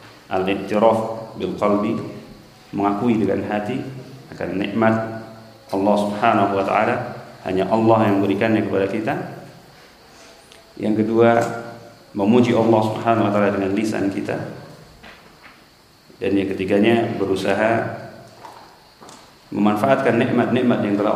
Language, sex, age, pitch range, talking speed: Indonesian, male, 40-59, 100-115 Hz, 100 wpm